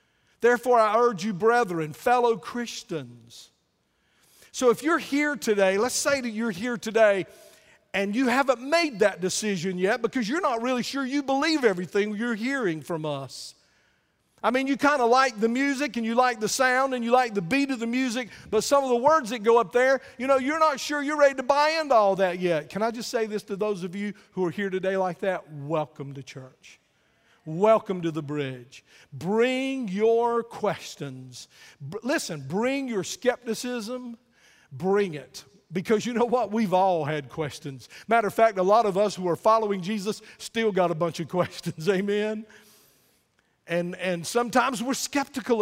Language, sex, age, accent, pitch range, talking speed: English, male, 50-69, American, 180-245 Hz, 190 wpm